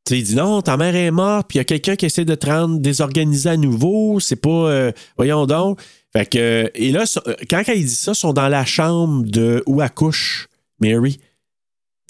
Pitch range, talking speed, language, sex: 130-180 Hz, 230 wpm, French, male